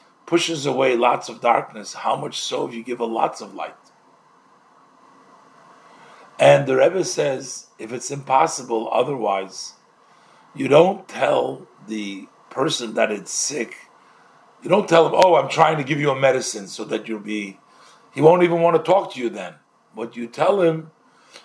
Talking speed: 170 wpm